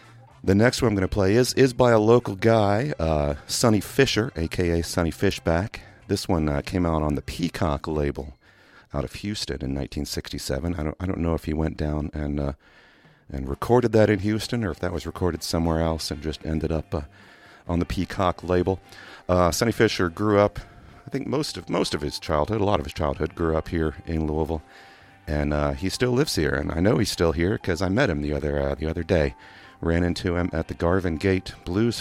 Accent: American